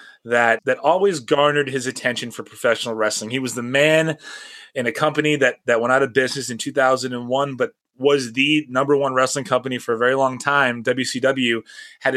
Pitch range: 115-145 Hz